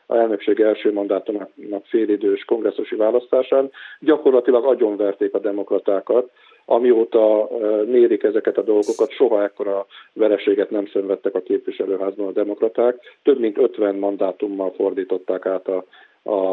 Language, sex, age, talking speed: Hungarian, male, 50-69, 125 wpm